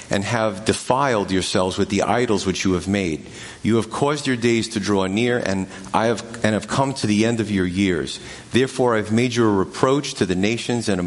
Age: 40-59